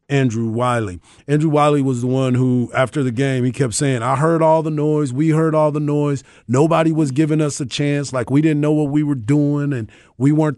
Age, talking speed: 40-59, 235 wpm